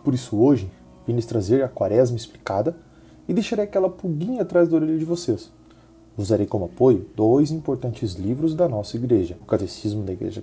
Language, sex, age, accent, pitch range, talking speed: Portuguese, male, 20-39, Brazilian, 110-160 Hz, 180 wpm